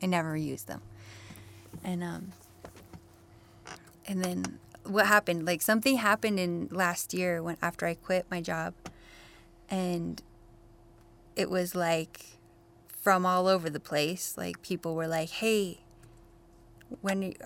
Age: 10-29